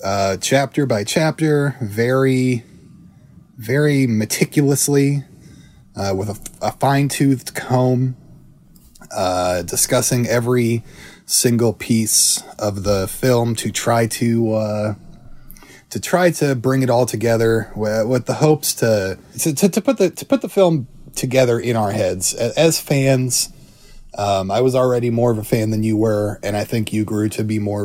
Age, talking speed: 30-49, 155 wpm